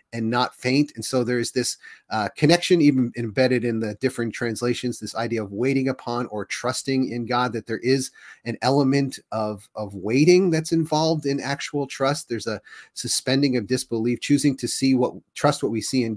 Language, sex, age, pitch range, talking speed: English, male, 30-49, 110-135 Hz, 190 wpm